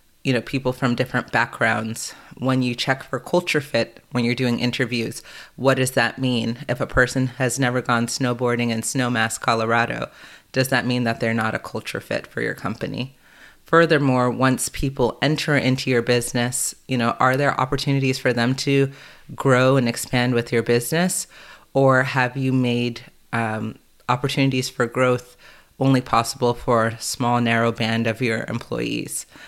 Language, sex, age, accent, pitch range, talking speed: English, female, 30-49, American, 120-135 Hz, 165 wpm